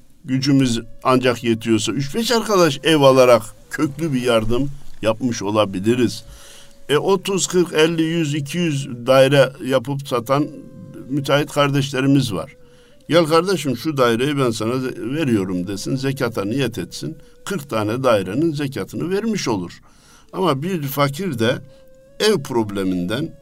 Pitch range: 120-175 Hz